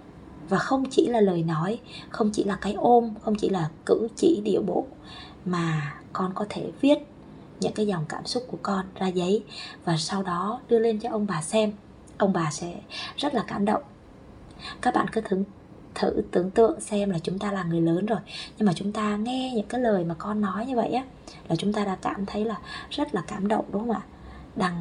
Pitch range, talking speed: 190-240 Hz, 225 wpm